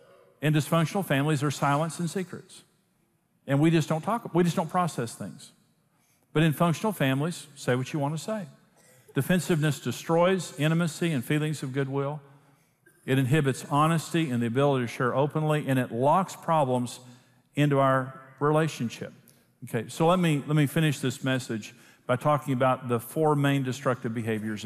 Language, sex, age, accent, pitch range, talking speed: English, male, 50-69, American, 125-150 Hz, 160 wpm